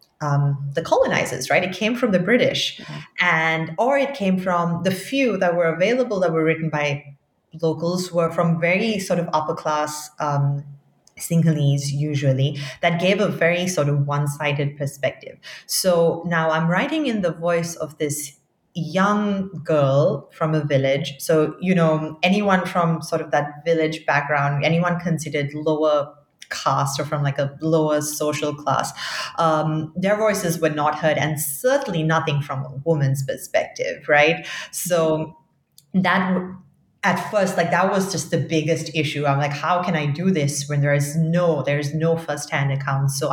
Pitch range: 150-180 Hz